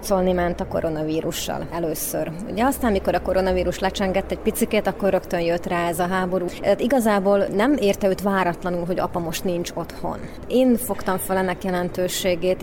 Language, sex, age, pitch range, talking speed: Hungarian, female, 30-49, 180-200 Hz, 165 wpm